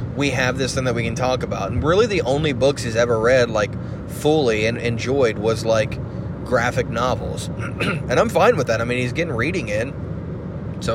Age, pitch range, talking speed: 20-39, 120-160 Hz, 205 wpm